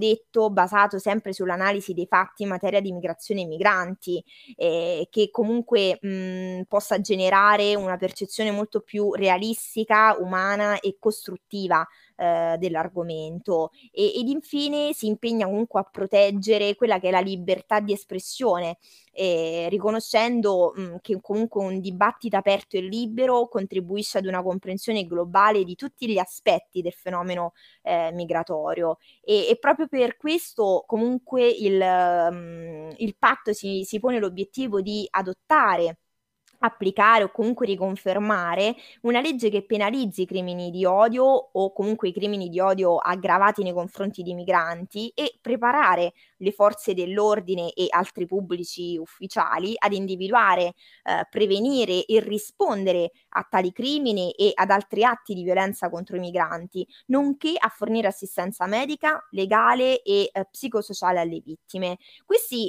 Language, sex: Italian, female